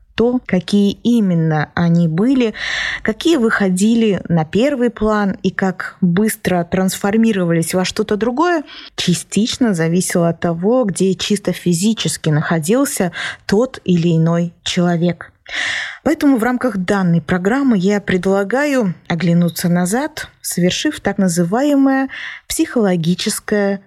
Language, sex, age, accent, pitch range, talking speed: Russian, female, 20-39, native, 175-225 Hz, 105 wpm